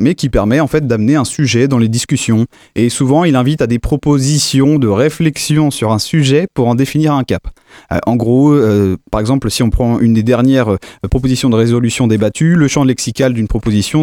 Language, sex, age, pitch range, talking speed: French, male, 30-49, 115-155 Hz, 215 wpm